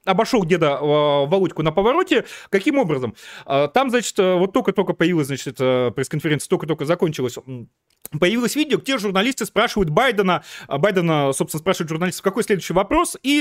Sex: male